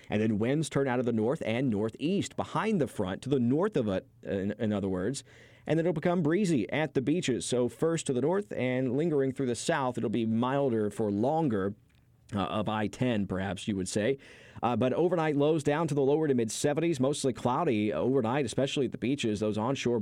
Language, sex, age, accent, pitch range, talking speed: English, male, 40-59, American, 110-145 Hz, 215 wpm